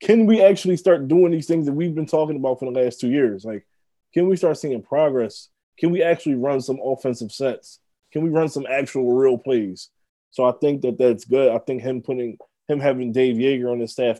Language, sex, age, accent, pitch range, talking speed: English, male, 20-39, American, 115-135 Hz, 230 wpm